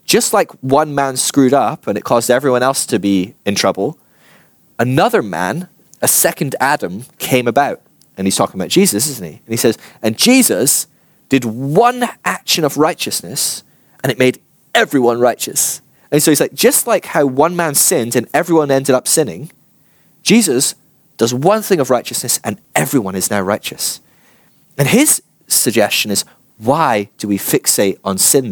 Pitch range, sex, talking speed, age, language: 100-140 Hz, male, 170 wpm, 20-39, English